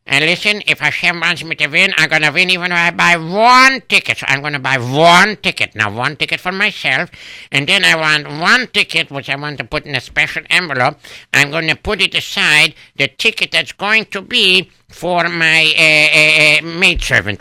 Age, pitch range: 60-79, 140-185 Hz